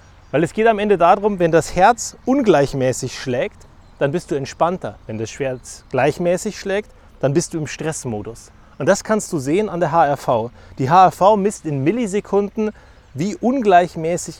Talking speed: 165 wpm